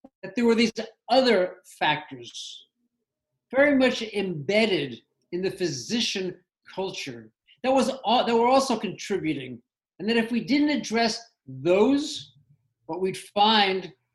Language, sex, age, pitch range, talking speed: English, male, 50-69, 165-230 Hz, 125 wpm